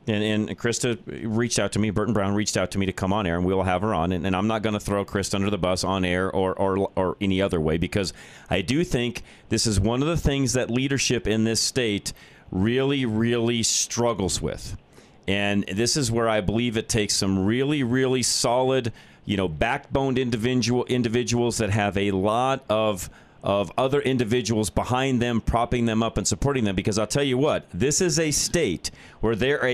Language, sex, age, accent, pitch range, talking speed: English, male, 40-59, American, 105-140 Hz, 210 wpm